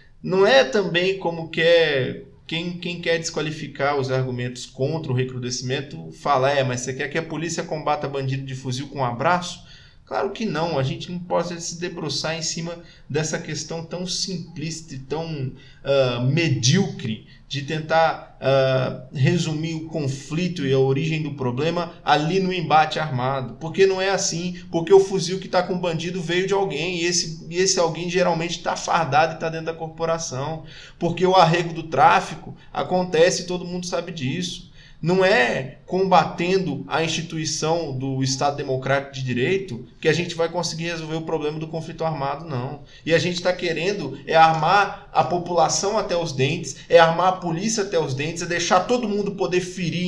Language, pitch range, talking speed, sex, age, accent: Portuguese, 140-175 Hz, 175 wpm, male, 20-39, Brazilian